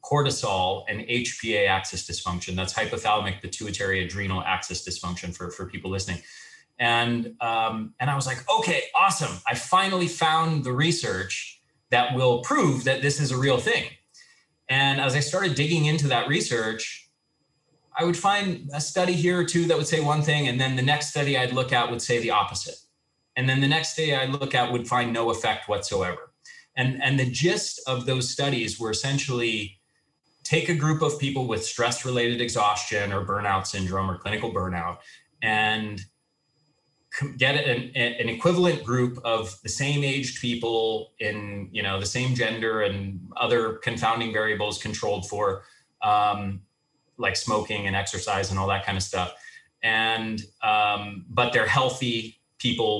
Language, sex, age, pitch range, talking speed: English, male, 30-49, 105-140 Hz, 165 wpm